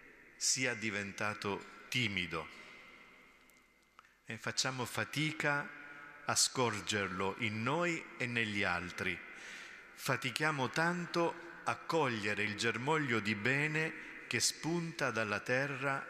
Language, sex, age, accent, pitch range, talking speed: Italian, male, 50-69, native, 100-130 Hz, 95 wpm